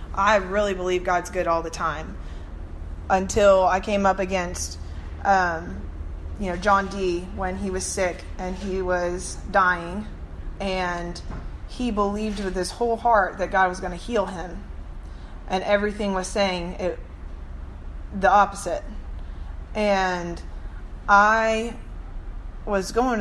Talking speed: 130 wpm